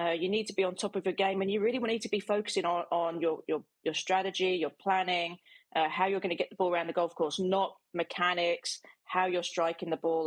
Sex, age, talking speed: female, 40-59, 255 wpm